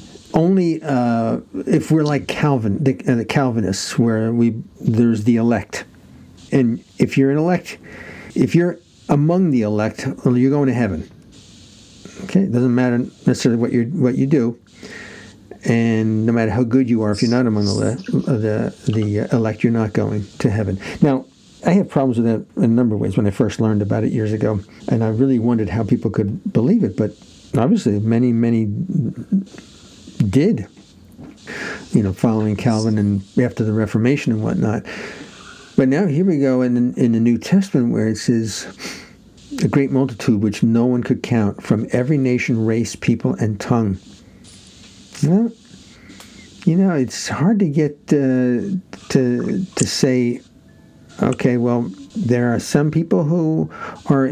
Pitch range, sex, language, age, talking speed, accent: 110-145 Hz, male, English, 60-79, 165 wpm, American